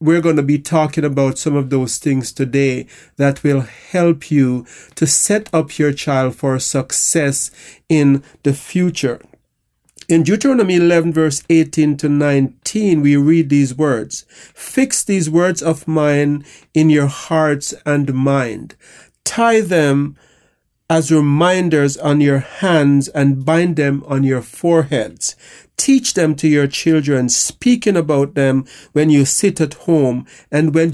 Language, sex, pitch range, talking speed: English, male, 140-160 Hz, 145 wpm